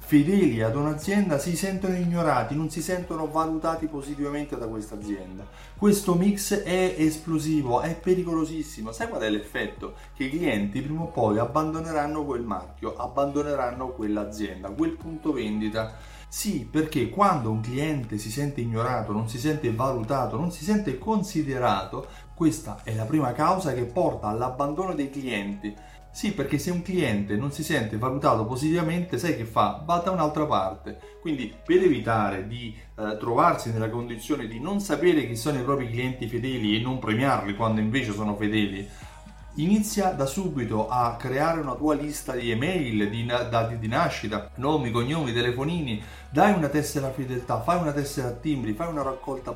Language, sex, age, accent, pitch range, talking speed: Italian, male, 30-49, native, 115-160 Hz, 165 wpm